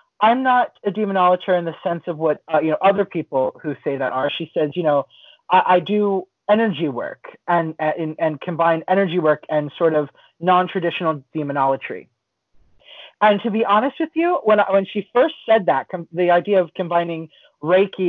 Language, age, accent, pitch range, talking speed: English, 30-49, American, 160-225 Hz, 190 wpm